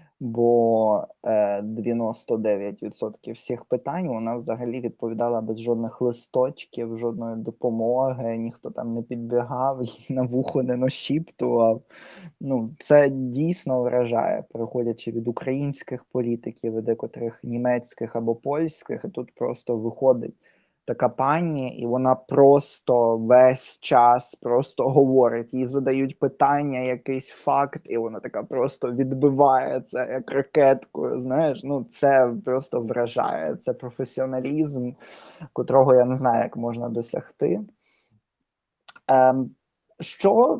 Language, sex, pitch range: Ukrainian, male, 120-140 Hz